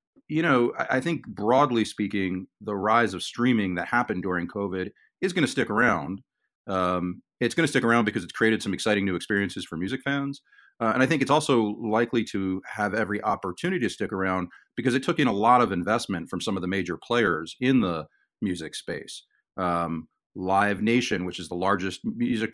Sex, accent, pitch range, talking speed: male, American, 90-105 Hz, 200 wpm